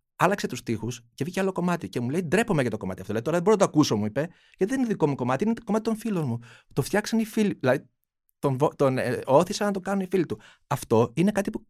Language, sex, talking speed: Greek, male, 275 wpm